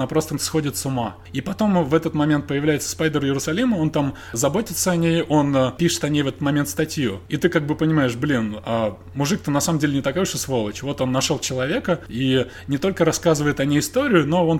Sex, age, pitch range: male, 20-39, 130-165 Hz